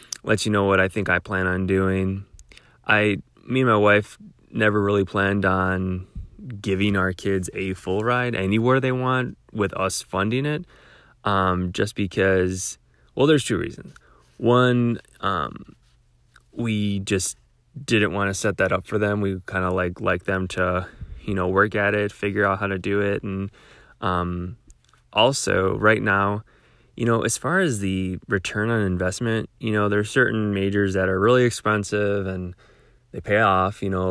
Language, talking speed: English, 170 wpm